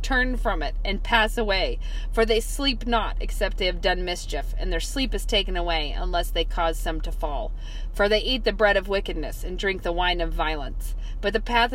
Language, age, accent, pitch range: English, 40-59, American, 175-205 Hz